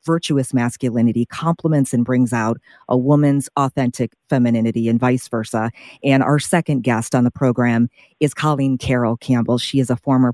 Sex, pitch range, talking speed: female, 120-140 Hz, 165 wpm